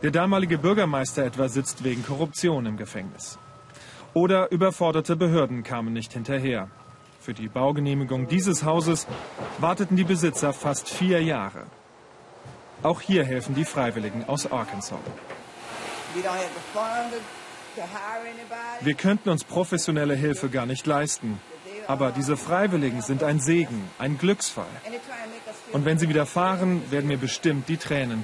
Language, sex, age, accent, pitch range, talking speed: German, male, 40-59, German, 130-170 Hz, 125 wpm